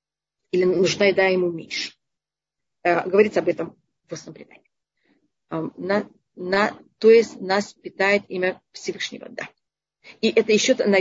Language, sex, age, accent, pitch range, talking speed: Russian, female, 30-49, native, 190-245 Hz, 130 wpm